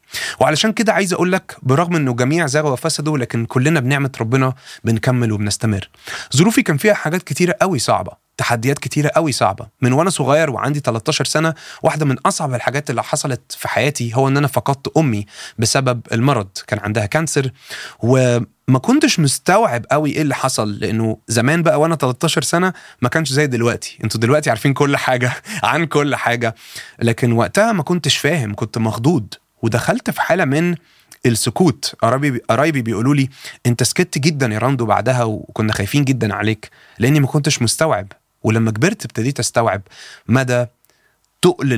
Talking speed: 160 wpm